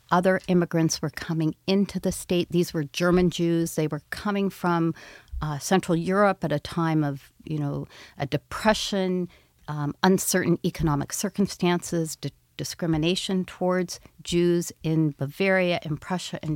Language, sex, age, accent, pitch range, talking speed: English, female, 50-69, American, 150-185 Hz, 140 wpm